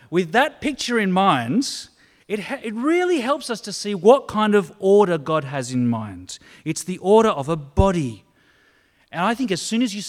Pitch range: 150-210 Hz